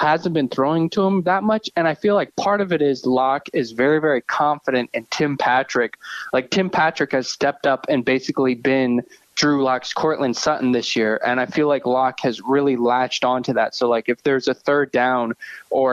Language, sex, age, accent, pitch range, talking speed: English, male, 20-39, American, 125-160 Hz, 210 wpm